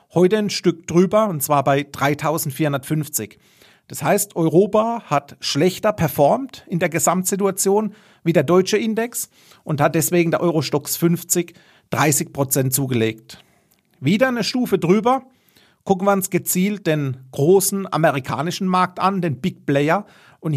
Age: 40-59